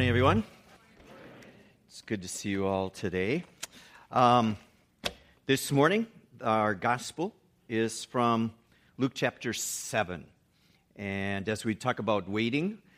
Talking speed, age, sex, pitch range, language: 120 wpm, 50-69, male, 105-135 Hz, English